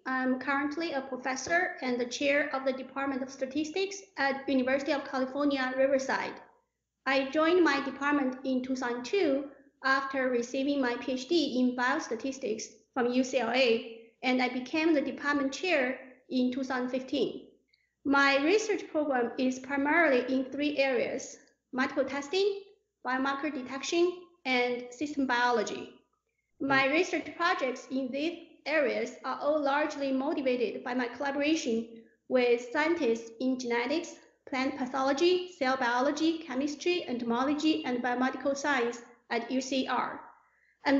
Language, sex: English, female